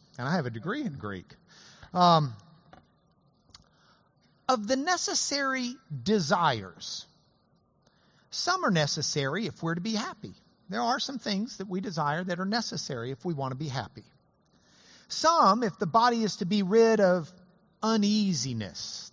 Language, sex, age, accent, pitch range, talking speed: English, male, 50-69, American, 165-255 Hz, 145 wpm